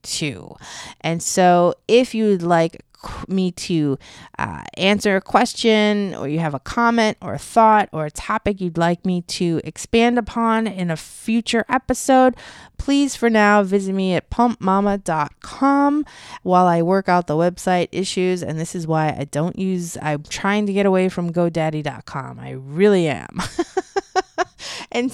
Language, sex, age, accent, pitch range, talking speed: English, female, 30-49, American, 175-245 Hz, 155 wpm